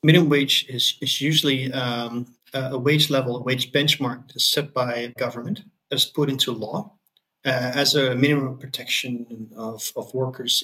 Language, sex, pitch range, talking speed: English, male, 125-145 Hz, 160 wpm